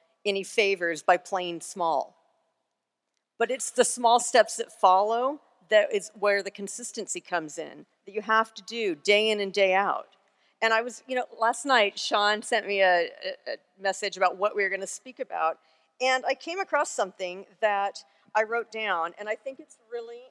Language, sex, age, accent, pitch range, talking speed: English, female, 50-69, American, 195-250 Hz, 185 wpm